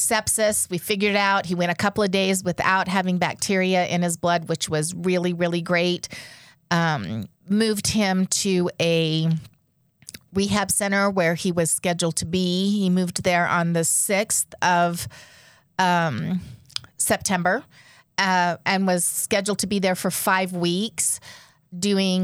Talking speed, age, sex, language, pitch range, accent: 150 wpm, 30-49, female, English, 165-190 Hz, American